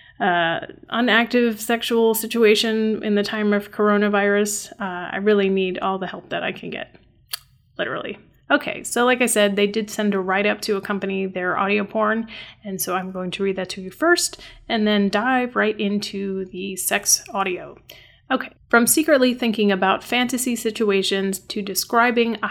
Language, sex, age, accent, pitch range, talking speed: English, female, 30-49, American, 195-230 Hz, 170 wpm